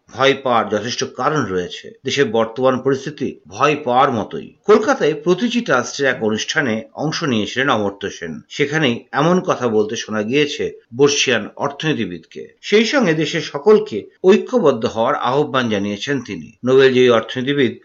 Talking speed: 90 wpm